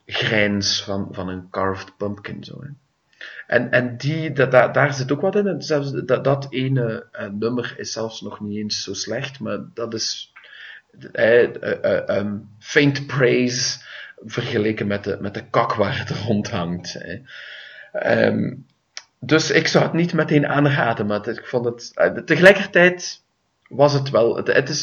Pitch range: 100-140 Hz